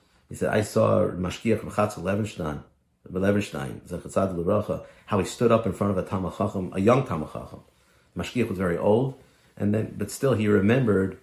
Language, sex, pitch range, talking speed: English, male, 85-110 Hz, 150 wpm